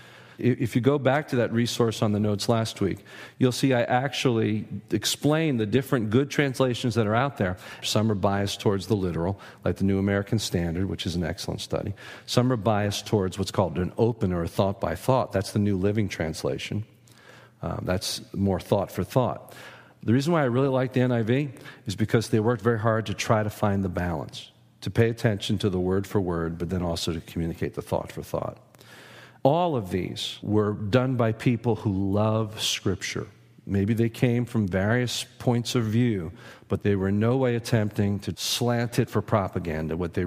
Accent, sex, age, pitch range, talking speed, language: American, male, 50-69, 95-120 Hz, 190 wpm, English